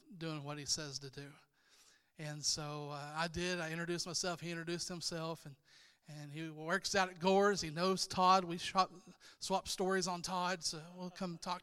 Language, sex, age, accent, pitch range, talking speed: English, male, 40-59, American, 165-195 Hz, 195 wpm